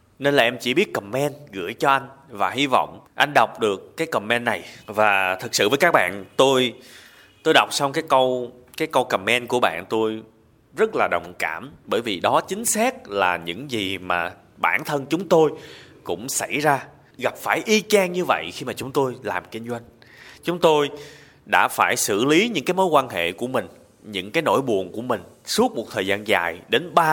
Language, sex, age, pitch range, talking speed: Vietnamese, male, 20-39, 110-155 Hz, 210 wpm